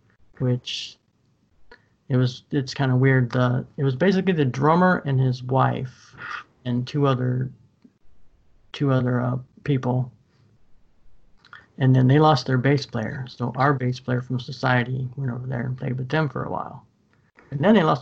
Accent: American